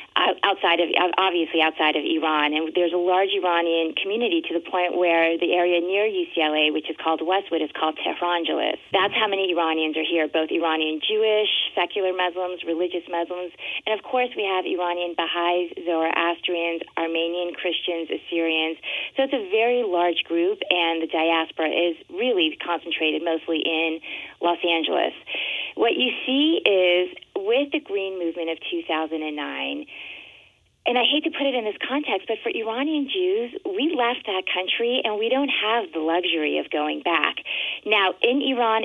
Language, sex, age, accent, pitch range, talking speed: English, female, 30-49, American, 165-235 Hz, 165 wpm